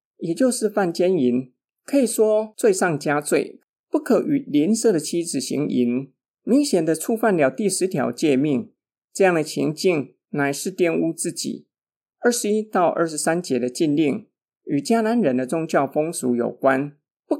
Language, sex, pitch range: Chinese, male, 140-220 Hz